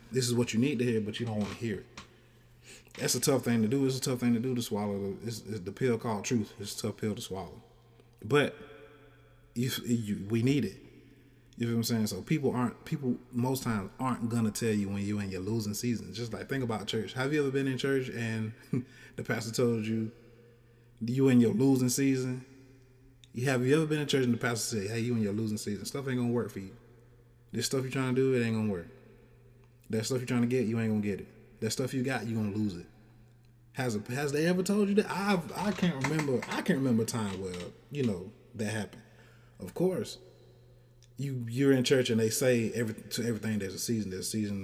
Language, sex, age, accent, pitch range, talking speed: English, male, 20-39, American, 110-130 Hz, 245 wpm